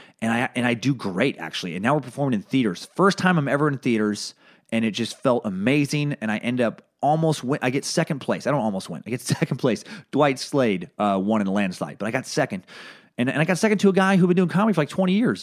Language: English